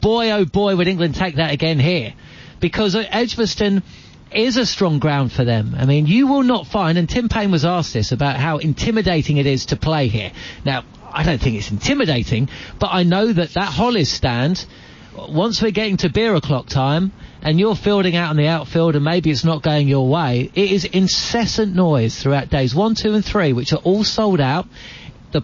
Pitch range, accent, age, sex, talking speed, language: 140-195 Hz, British, 40-59, male, 205 wpm, English